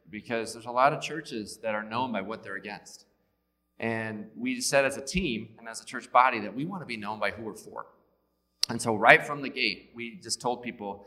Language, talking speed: English, 235 wpm